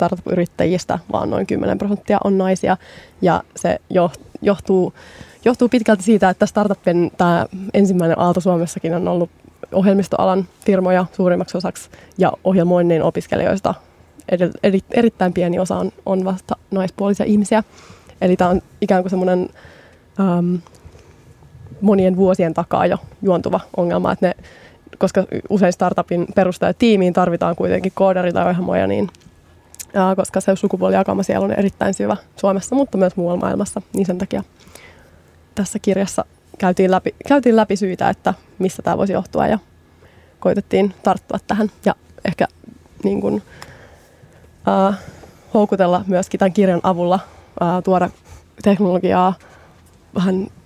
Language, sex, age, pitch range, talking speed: Finnish, female, 20-39, 175-200 Hz, 125 wpm